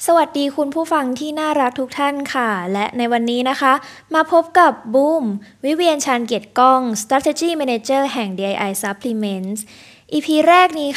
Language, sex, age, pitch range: Thai, female, 20-39, 210-280 Hz